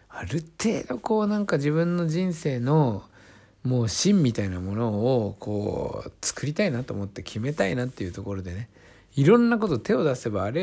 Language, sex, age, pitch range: Japanese, male, 60-79, 95-145 Hz